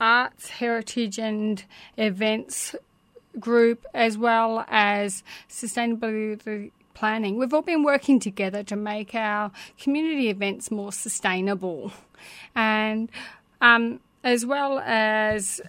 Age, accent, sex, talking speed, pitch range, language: 30-49, Australian, female, 105 wpm, 210-240 Hz, English